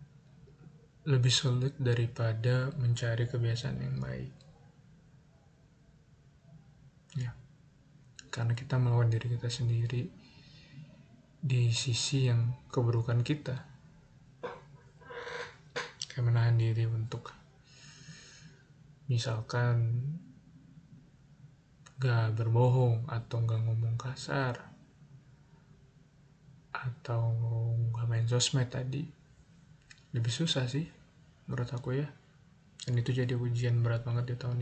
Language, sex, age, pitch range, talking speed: Indonesian, male, 20-39, 120-145 Hz, 85 wpm